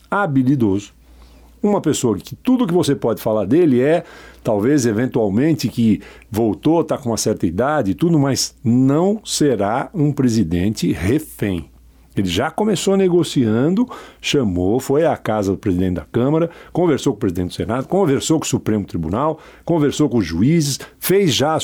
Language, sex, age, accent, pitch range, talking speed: Portuguese, male, 60-79, Brazilian, 105-165 Hz, 160 wpm